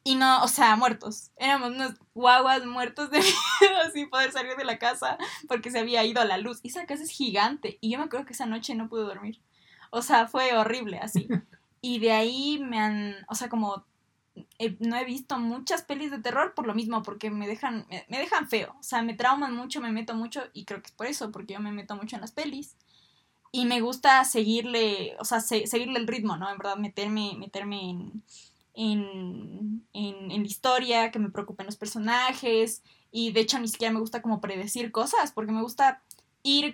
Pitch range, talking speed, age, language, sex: 210-260 Hz, 215 wpm, 10-29, Spanish, female